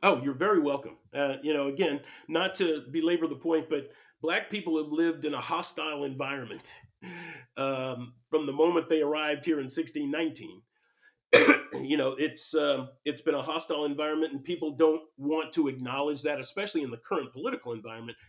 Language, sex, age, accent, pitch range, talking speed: English, male, 40-59, American, 135-170 Hz, 175 wpm